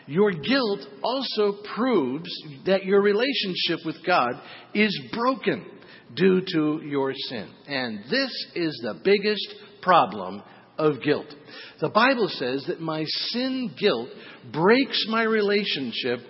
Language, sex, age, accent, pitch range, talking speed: English, male, 50-69, American, 160-220 Hz, 120 wpm